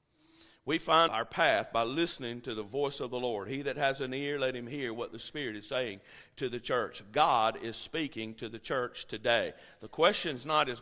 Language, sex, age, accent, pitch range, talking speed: English, male, 50-69, American, 125-165 Hz, 220 wpm